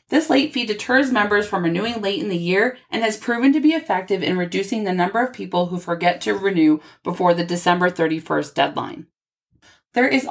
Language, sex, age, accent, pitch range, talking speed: English, female, 30-49, American, 175-235 Hz, 200 wpm